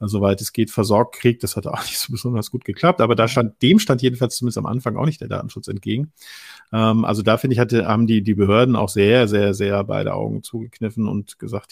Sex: male